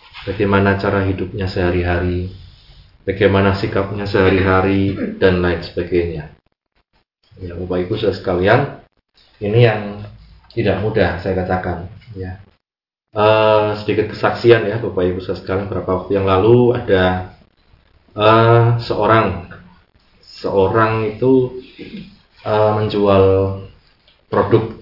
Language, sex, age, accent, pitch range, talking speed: Indonesian, male, 20-39, native, 90-115 Hz, 95 wpm